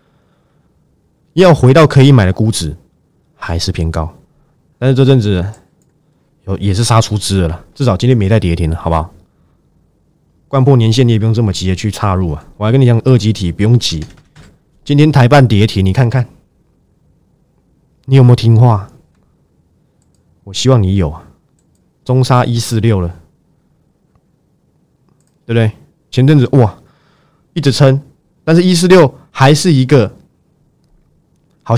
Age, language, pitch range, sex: 20-39, Chinese, 95-135 Hz, male